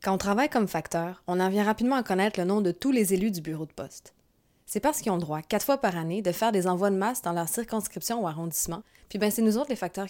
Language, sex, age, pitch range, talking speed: French, female, 20-39, 170-215 Hz, 290 wpm